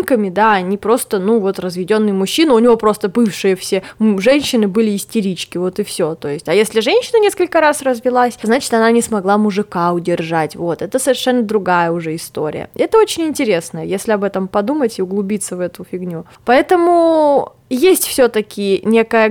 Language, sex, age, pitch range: Russian, female, 20-39, 200-260 Hz